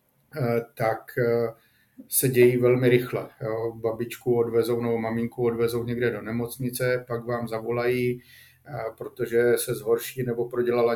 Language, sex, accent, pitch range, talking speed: Czech, male, native, 115-125 Hz, 115 wpm